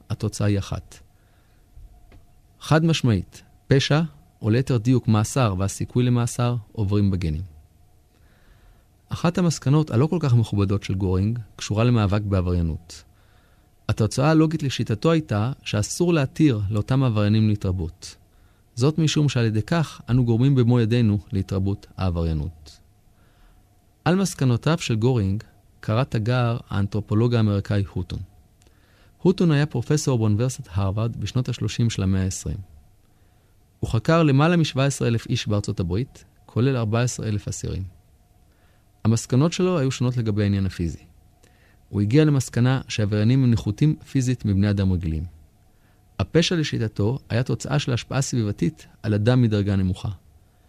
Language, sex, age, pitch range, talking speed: Hebrew, male, 30-49, 100-125 Hz, 120 wpm